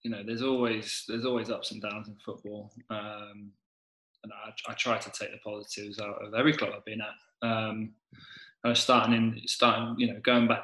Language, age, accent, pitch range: English, 20-39, British, 110-120 Hz